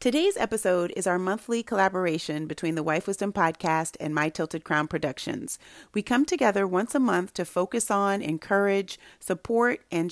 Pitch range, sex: 160-210 Hz, female